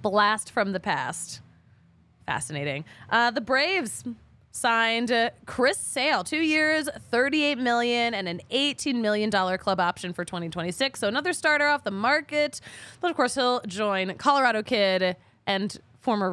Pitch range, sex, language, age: 180-275 Hz, female, English, 20-39